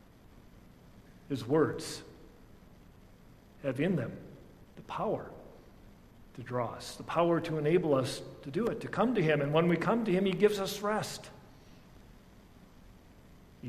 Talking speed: 145 wpm